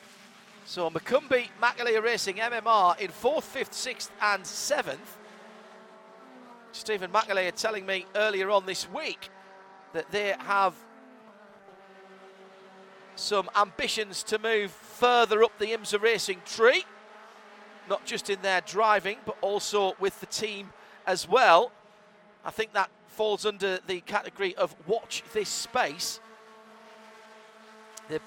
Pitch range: 195-220 Hz